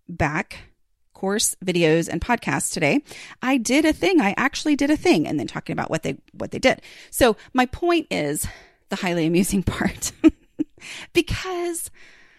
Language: English